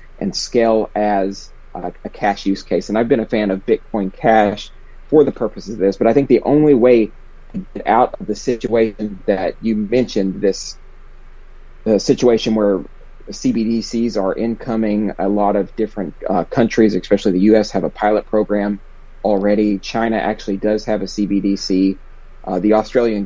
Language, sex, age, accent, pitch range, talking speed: English, male, 30-49, American, 95-110 Hz, 165 wpm